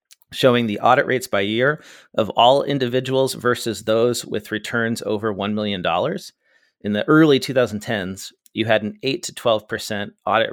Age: 40-59